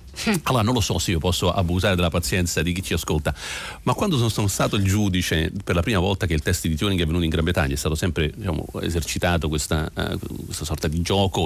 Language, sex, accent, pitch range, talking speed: Italian, male, native, 80-100 Hz, 240 wpm